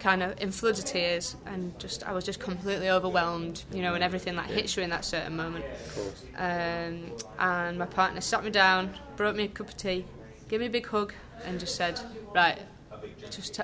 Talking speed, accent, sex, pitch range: 210 wpm, British, female, 175-195 Hz